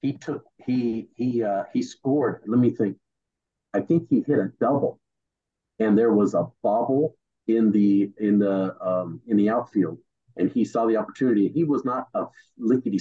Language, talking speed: English, 180 wpm